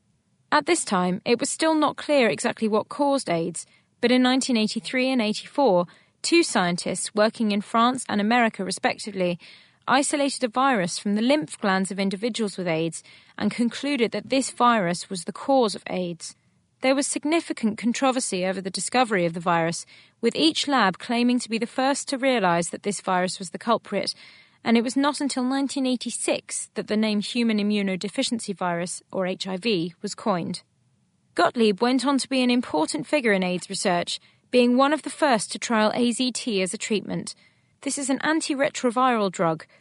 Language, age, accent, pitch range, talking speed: English, 30-49, British, 190-255 Hz, 175 wpm